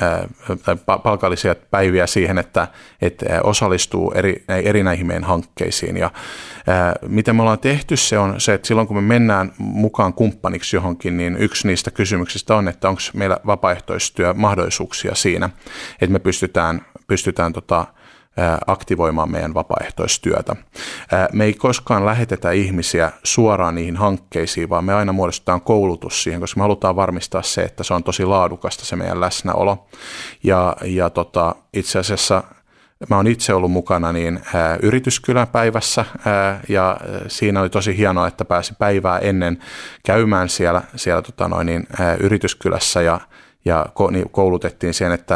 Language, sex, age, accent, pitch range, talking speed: Finnish, male, 30-49, native, 90-110 Hz, 150 wpm